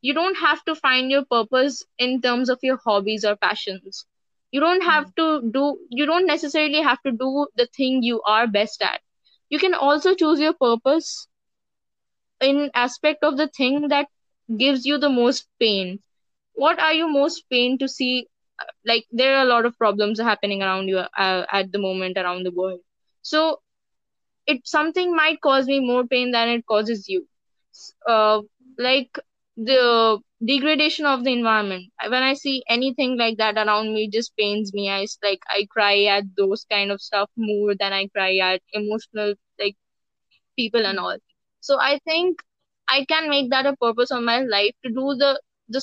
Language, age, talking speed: English, 20-39, 180 wpm